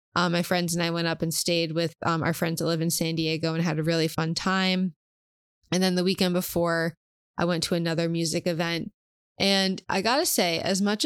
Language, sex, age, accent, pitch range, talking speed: English, female, 20-39, American, 170-190 Hz, 230 wpm